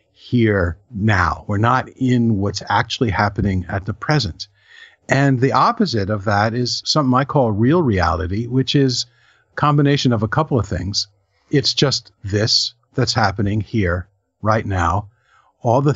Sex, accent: male, American